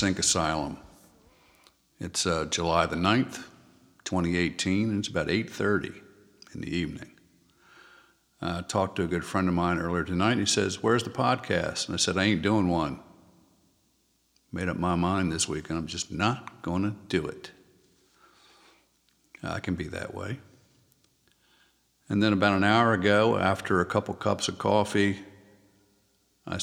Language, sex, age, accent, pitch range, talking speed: English, male, 50-69, American, 85-105 Hz, 160 wpm